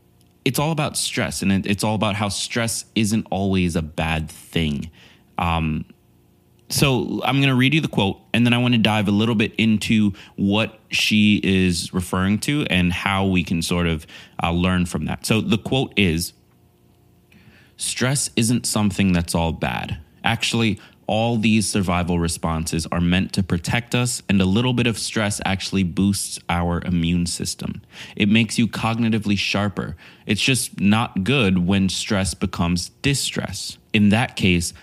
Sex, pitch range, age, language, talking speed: male, 85-110 Hz, 20-39, English, 165 wpm